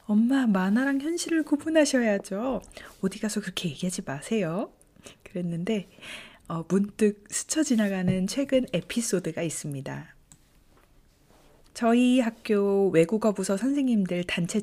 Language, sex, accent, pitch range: Korean, female, native, 185-245 Hz